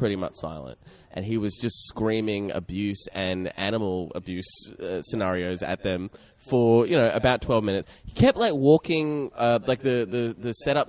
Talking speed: 175 wpm